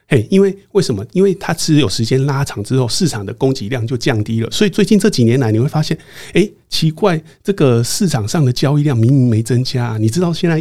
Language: Chinese